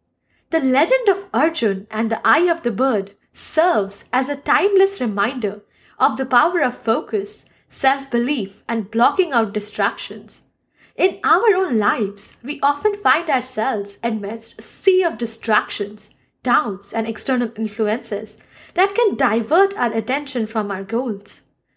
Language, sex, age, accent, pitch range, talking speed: English, female, 10-29, Indian, 210-295 Hz, 140 wpm